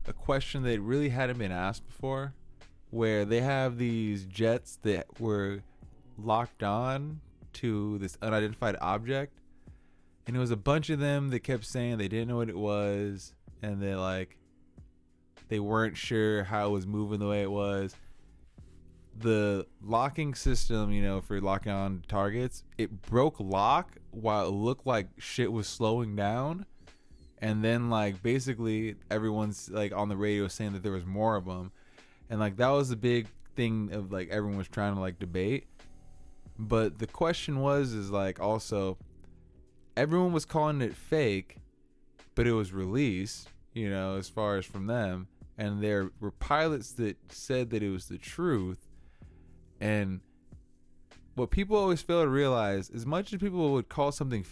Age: 20-39